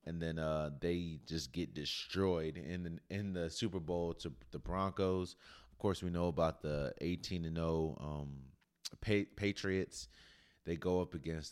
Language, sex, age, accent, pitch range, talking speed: English, male, 30-49, American, 80-115 Hz, 165 wpm